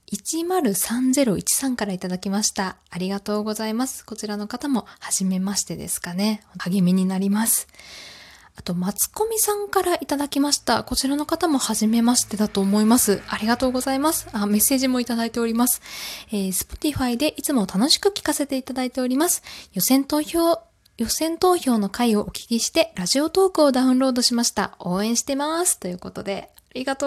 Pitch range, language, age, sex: 190-265 Hz, Japanese, 20-39, female